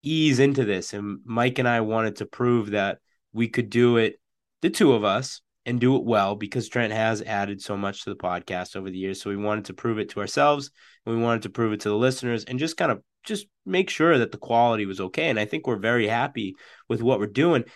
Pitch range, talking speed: 100-130 Hz, 250 wpm